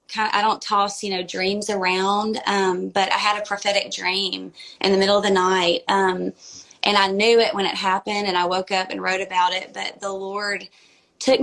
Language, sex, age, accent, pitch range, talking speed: English, female, 20-39, American, 185-205 Hz, 210 wpm